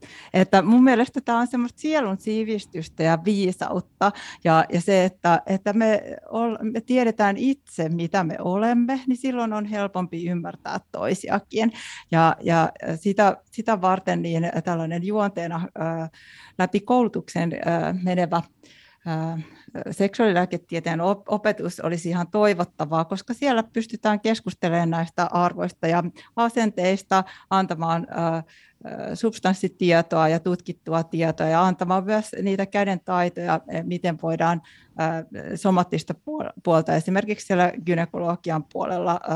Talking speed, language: 115 wpm, Finnish